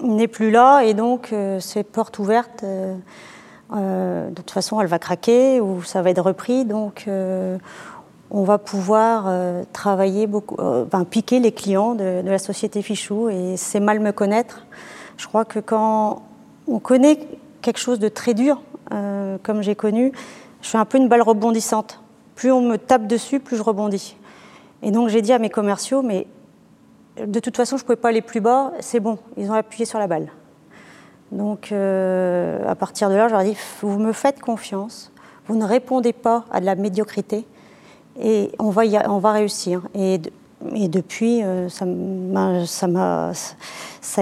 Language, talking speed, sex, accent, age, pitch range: French, 190 wpm, female, French, 30-49, 200-235 Hz